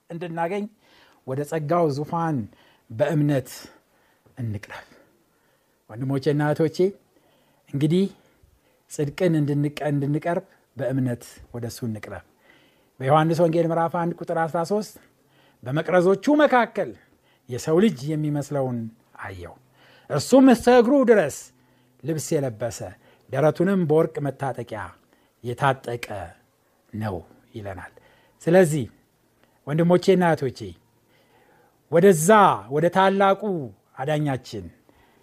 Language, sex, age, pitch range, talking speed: Amharic, male, 60-79, 125-190 Hz, 35 wpm